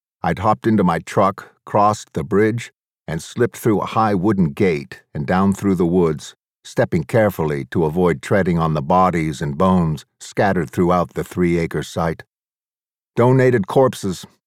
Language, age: English, 50-69